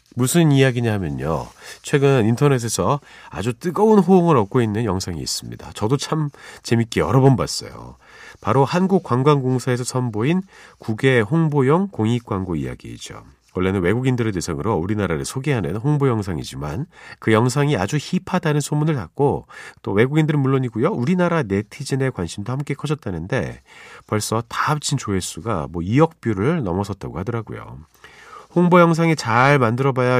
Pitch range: 105-150 Hz